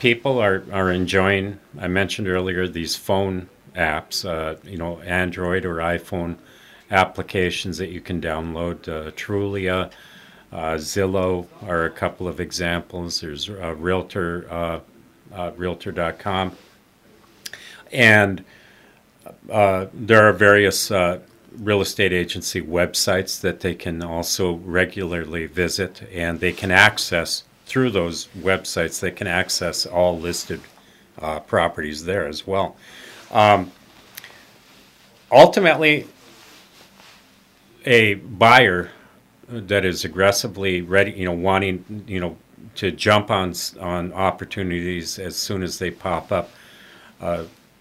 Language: English